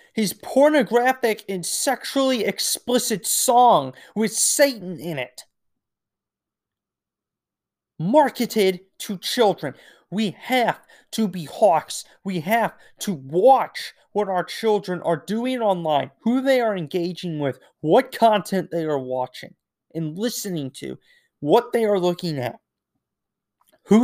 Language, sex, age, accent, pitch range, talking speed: English, male, 30-49, American, 150-215 Hz, 115 wpm